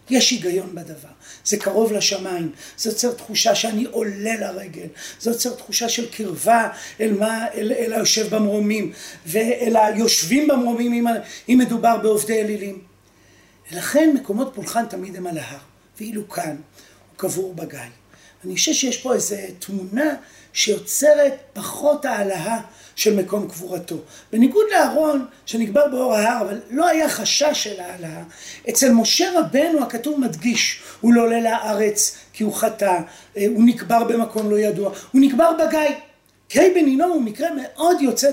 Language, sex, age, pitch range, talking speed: Hebrew, male, 40-59, 205-275 Hz, 145 wpm